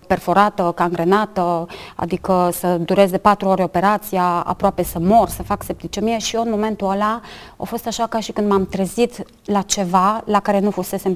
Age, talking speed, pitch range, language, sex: 30-49, 175 wpm, 185-215 Hz, Romanian, female